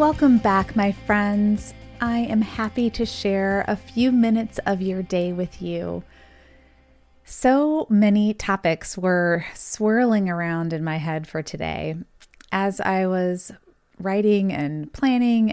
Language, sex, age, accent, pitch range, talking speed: English, female, 30-49, American, 175-215 Hz, 130 wpm